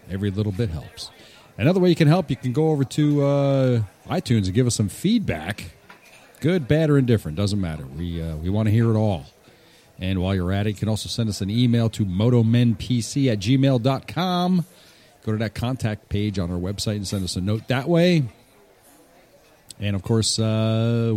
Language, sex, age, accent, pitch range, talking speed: English, male, 40-59, American, 100-150 Hz, 200 wpm